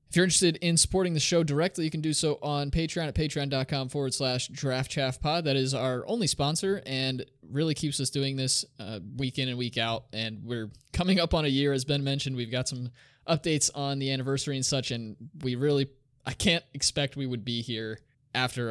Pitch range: 110-145 Hz